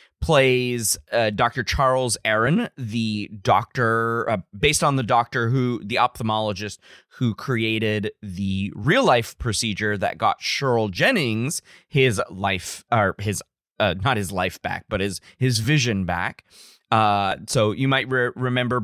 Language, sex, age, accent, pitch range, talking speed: English, male, 20-39, American, 100-135 Hz, 145 wpm